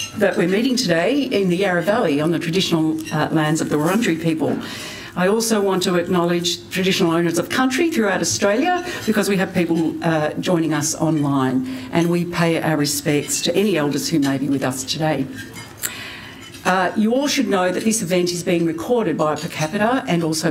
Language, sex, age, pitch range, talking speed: English, female, 60-79, 150-195 Hz, 195 wpm